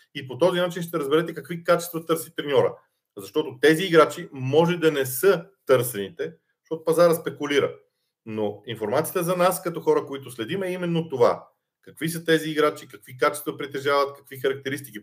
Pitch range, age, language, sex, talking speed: 135-170 Hz, 40-59, Bulgarian, male, 165 wpm